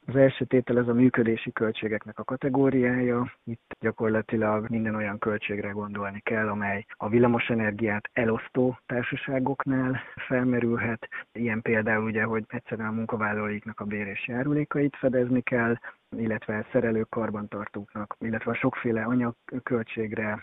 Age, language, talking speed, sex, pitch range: 30-49, Hungarian, 125 wpm, male, 110-125 Hz